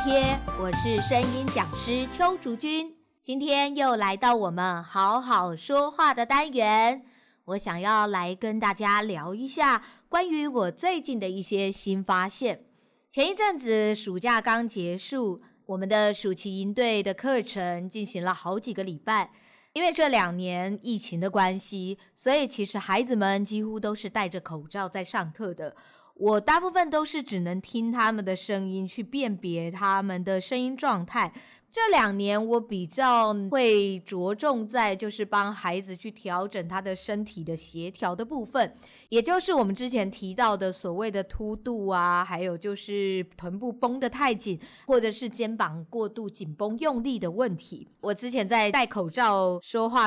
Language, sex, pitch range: Chinese, female, 190-245 Hz